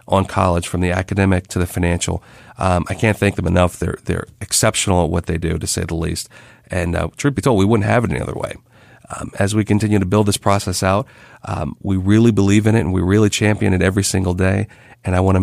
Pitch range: 95-115 Hz